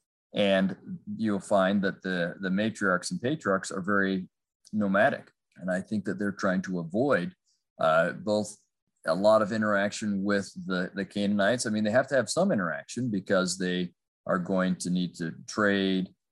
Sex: male